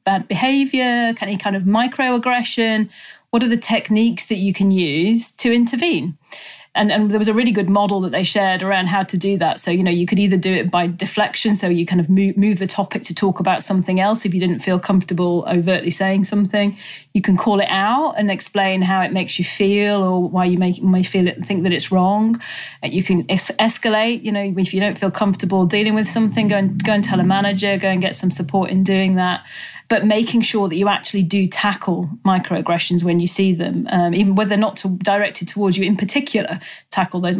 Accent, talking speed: British, 225 wpm